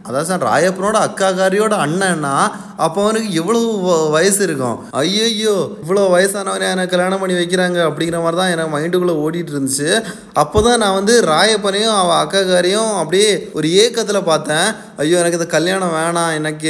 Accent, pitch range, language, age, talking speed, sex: native, 150-200 Hz, Tamil, 20-39, 145 wpm, male